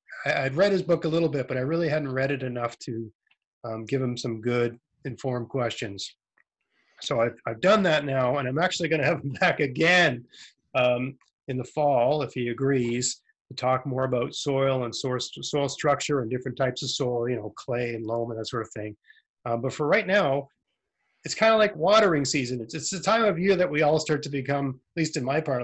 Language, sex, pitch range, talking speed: English, male, 125-160 Hz, 220 wpm